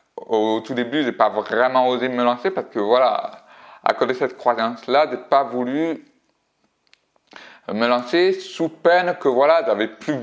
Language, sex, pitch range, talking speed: French, male, 110-155 Hz, 165 wpm